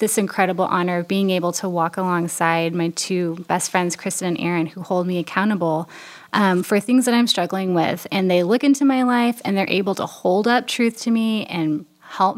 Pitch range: 185-250 Hz